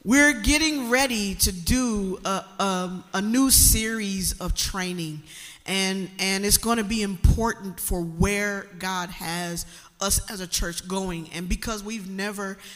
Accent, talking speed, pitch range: American, 150 wpm, 175-225 Hz